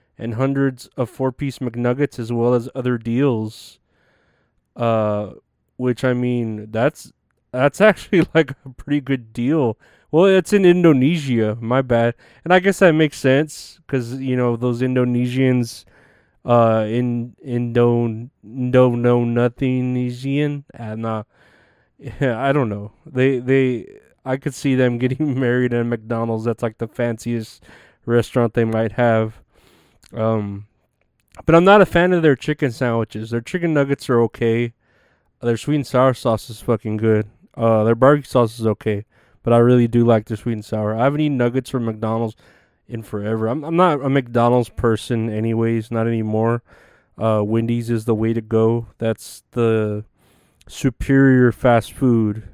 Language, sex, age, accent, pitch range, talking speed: English, male, 20-39, American, 110-130 Hz, 155 wpm